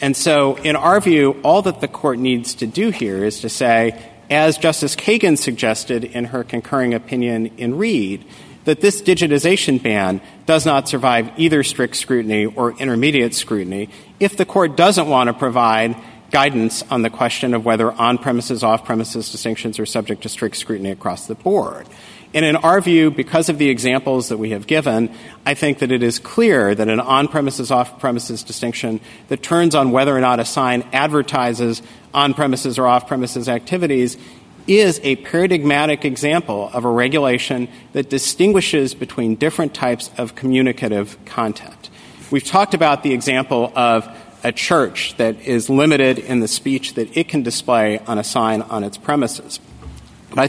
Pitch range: 115-145 Hz